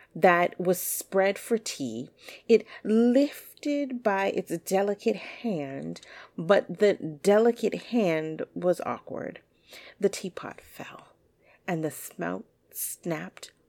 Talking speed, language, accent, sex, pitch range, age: 105 wpm, English, American, female, 165-240 Hz, 40-59